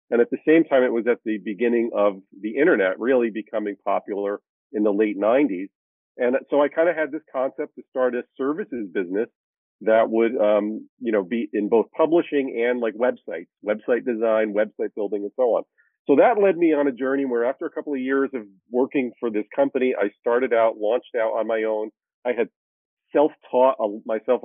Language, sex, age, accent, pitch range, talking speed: English, male, 40-59, American, 115-140 Hz, 205 wpm